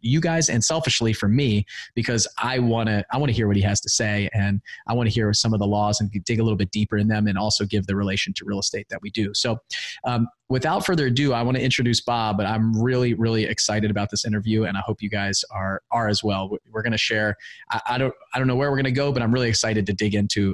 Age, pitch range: 30-49, 105-125 Hz